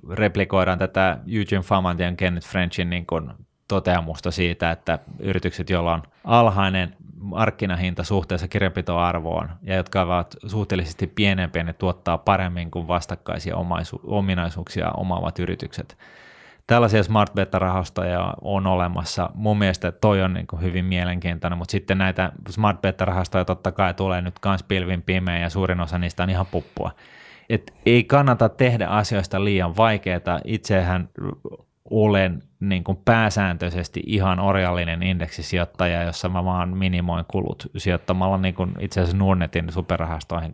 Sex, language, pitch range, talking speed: male, Finnish, 90-100 Hz, 135 wpm